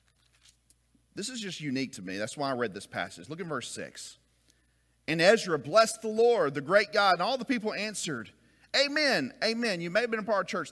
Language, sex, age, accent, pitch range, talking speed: English, male, 40-59, American, 140-225 Hz, 220 wpm